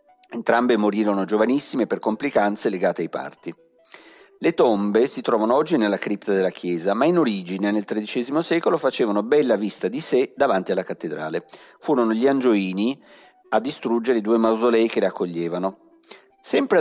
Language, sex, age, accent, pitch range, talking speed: Italian, male, 40-59, native, 105-160 Hz, 150 wpm